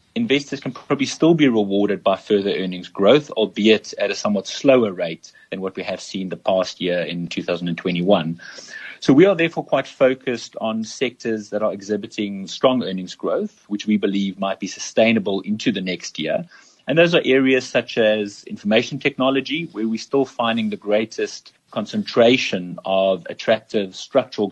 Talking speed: 165 wpm